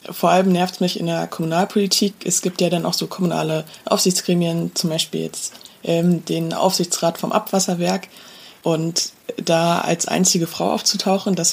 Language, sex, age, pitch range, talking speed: German, female, 20-39, 170-190 Hz, 160 wpm